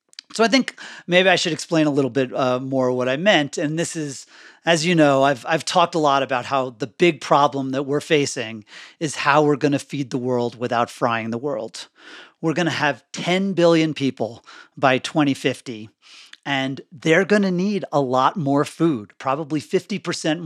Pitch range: 140-180 Hz